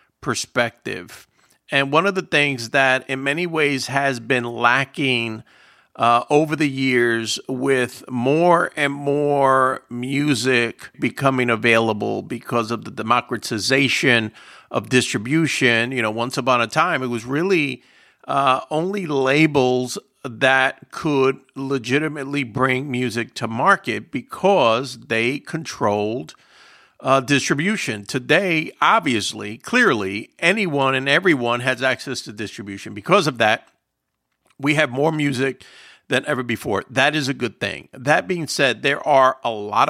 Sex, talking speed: male, 130 wpm